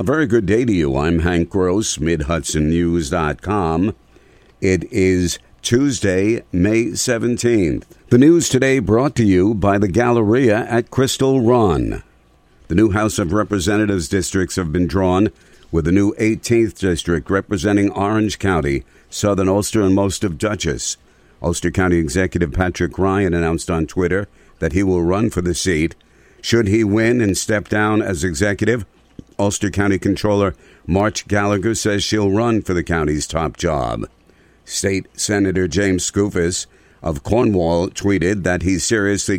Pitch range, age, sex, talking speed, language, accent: 85-100 Hz, 60-79, male, 145 wpm, English, American